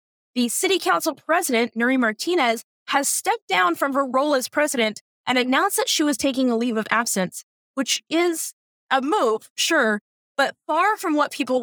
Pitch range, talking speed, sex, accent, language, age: 230-320 Hz, 175 wpm, female, American, English, 20-39